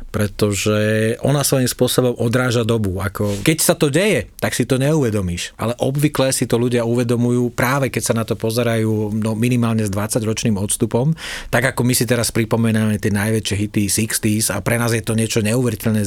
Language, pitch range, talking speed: Slovak, 110-125 Hz, 185 wpm